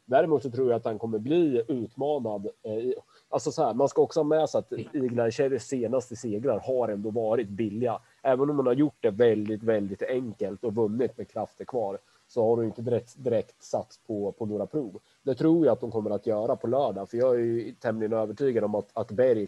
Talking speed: 220 wpm